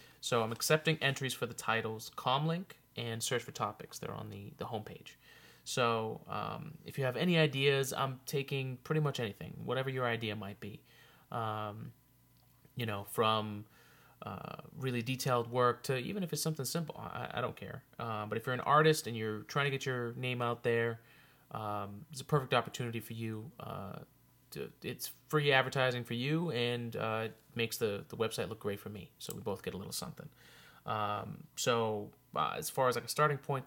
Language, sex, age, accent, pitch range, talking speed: English, male, 30-49, American, 115-150 Hz, 195 wpm